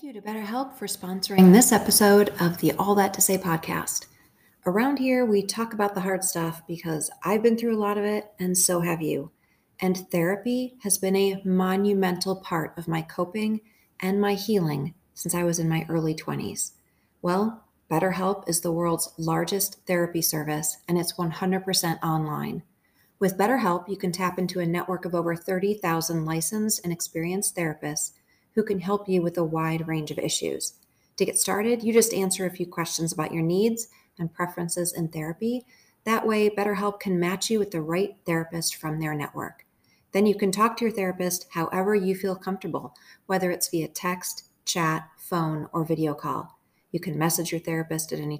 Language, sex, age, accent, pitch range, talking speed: English, female, 30-49, American, 165-205 Hz, 185 wpm